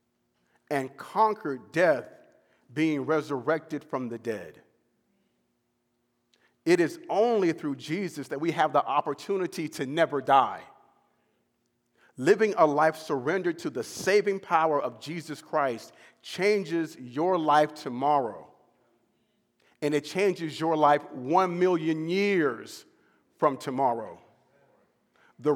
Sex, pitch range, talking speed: male, 130-180 Hz, 110 wpm